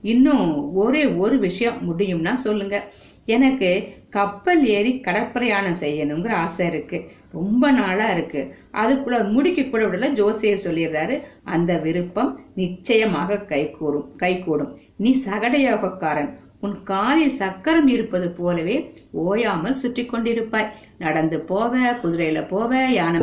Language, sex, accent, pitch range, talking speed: Tamil, female, native, 175-245 Hz, 100 wpm